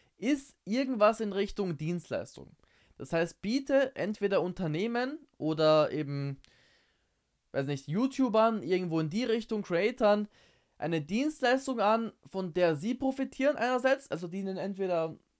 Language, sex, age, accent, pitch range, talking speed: German, male, 20-39, German, 150-210 Hz, 125 wpm